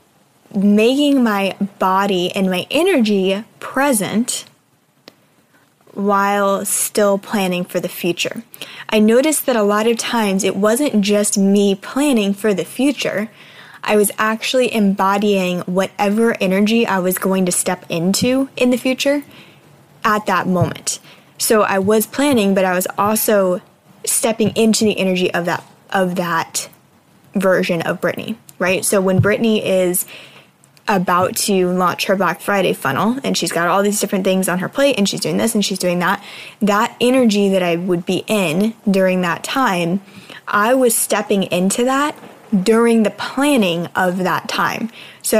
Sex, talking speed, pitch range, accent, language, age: female, 155 wpm, 190-230 Hz, American, English, 10-29